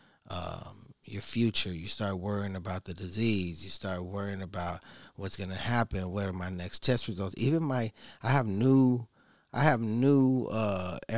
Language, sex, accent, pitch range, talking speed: English, male, American, 95-125 Hz, 170 wpm